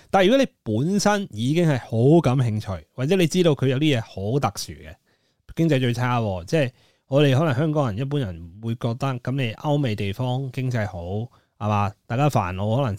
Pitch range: 105-145 Hz